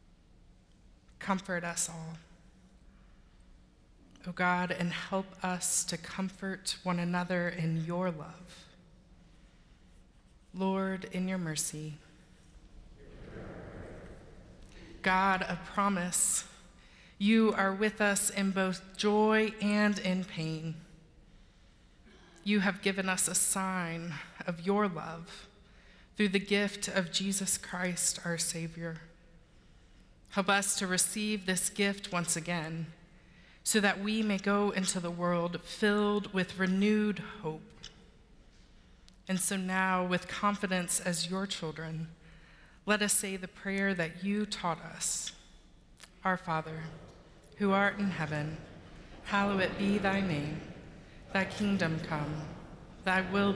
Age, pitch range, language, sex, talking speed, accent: 20-39, 165-195 Hz, English, female, 115 wpm, American